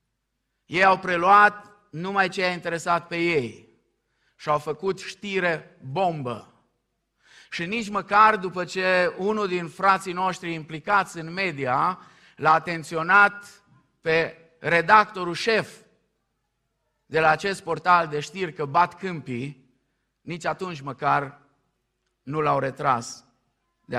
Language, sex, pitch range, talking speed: Romanian, male, 150-190 Hz, 120 wpm